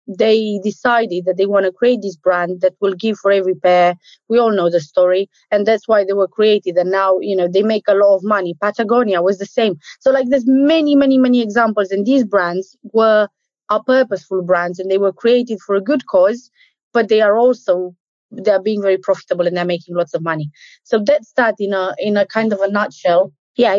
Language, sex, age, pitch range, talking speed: English, female, 20-39, 190-235 Hz, 225 wpm